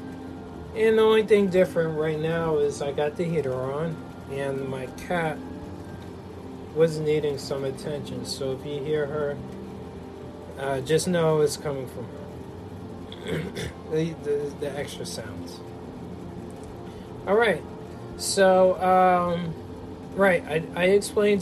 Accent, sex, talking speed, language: American, male, 125 wpm, English